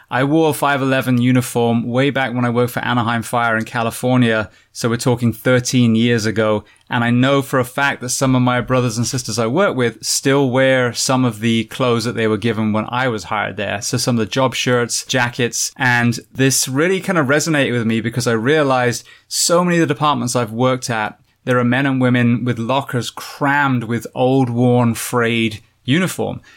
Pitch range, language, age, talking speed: 115-130 Hz, English, 20-39, 205 wpm